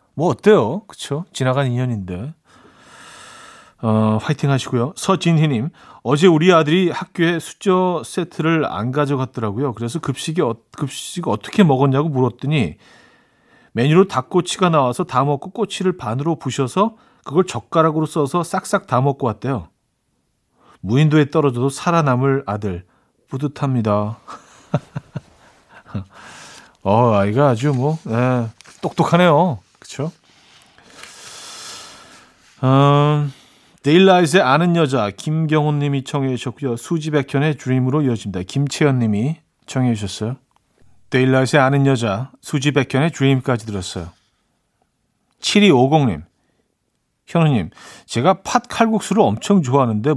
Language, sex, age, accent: Korean, male, 40-59, native